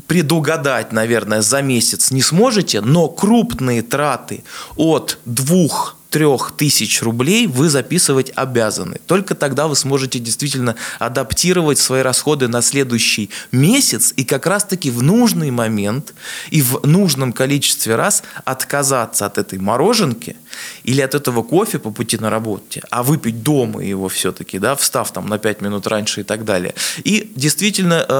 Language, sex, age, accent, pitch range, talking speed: Russian, male, 20-39, native, 115-155 Hz, 145 wpm